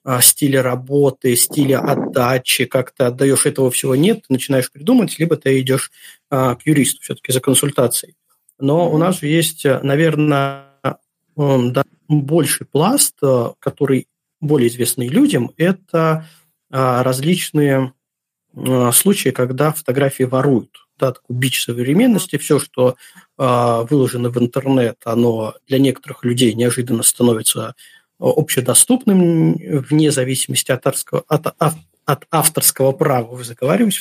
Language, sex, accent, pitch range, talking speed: Russian, male, native, 130-160 Hz, 110 wpm